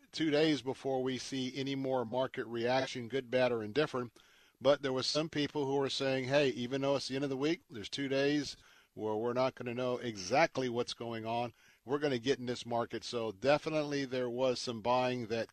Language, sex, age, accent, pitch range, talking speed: English, male, 50-69, American, 120-145 Hz, 220 wpm